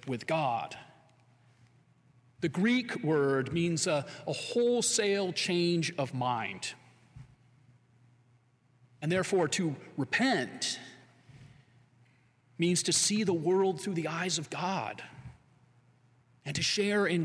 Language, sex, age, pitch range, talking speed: English, male, 40-59, 125-170 Hz, 105 wpm